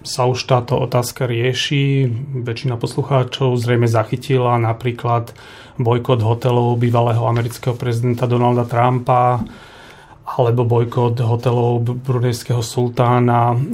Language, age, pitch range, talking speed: Slovak, 30-49, 120-130 Hz, 95 wpm